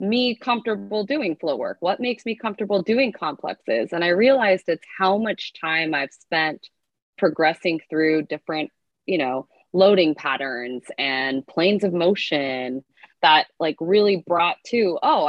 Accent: American